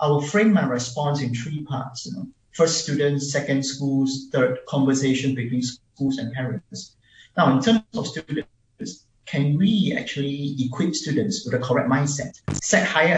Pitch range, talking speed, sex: 130-175 Hz, 165 wpm, male